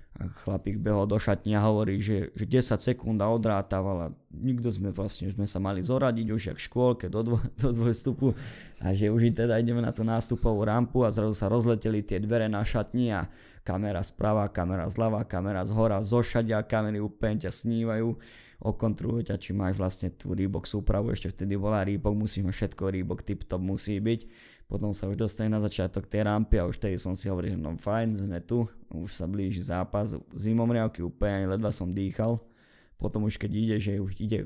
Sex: male